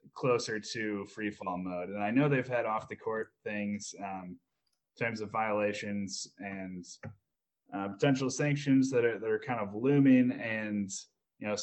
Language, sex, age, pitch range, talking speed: English, male, 10-29, 105-125 Hz, 170 wpm